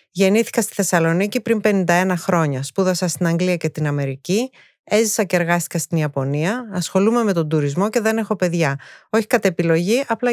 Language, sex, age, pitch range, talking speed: Greek, female, 30-49, 175-220 Hz, 170 wpm